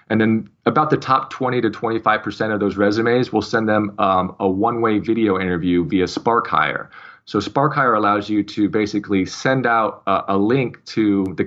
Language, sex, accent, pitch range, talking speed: English, male, American, 100-125 Hz, 195 wpm